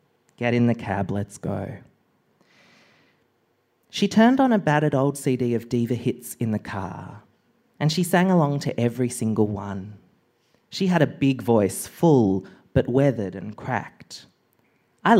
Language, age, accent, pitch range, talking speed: English, 30-49, Australian, 110-145 Hz, 150 wpm